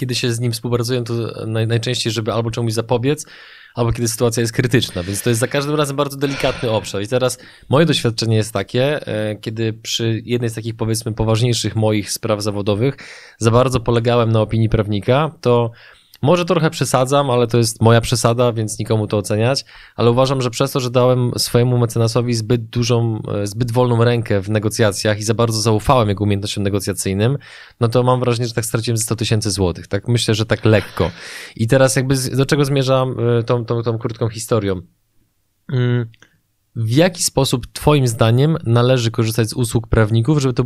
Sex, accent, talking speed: male, native, 180 wpm